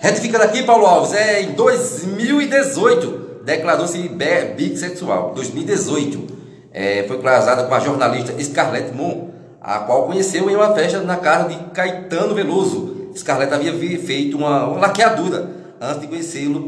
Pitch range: 165-250 Hz